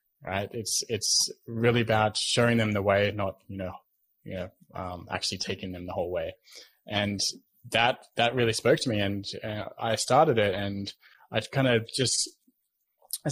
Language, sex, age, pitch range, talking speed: English, male, 20-39, 100-115 Hz, 175 wpm